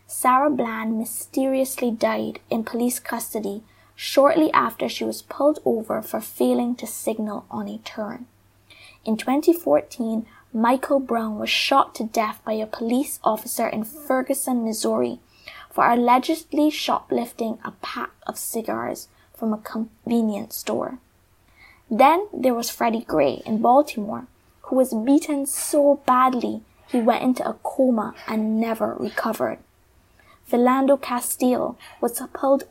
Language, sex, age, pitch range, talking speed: English, female, 20-39, 220-265 Hz, 130 wpm